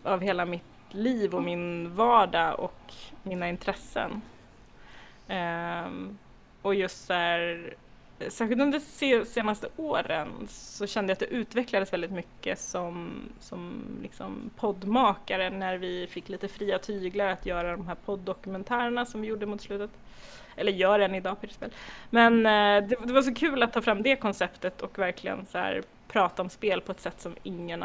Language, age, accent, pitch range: Swedish, 20-39, native, 185-245 Hz